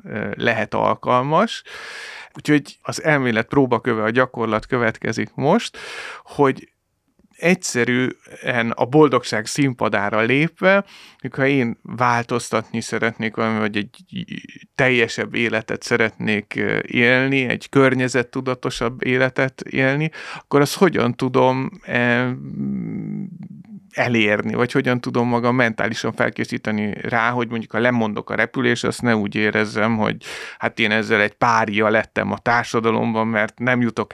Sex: male